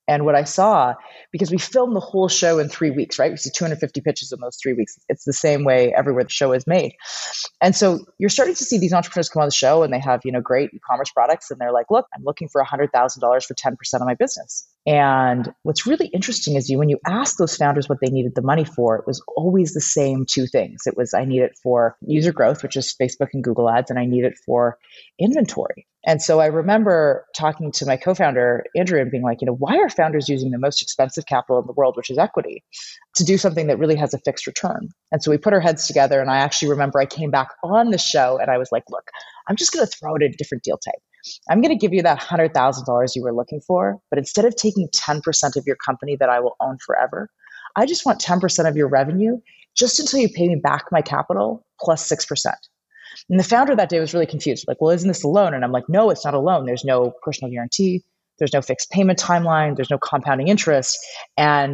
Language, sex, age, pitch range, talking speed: English, female, 30-49, 130-180 Hz, 250 wpm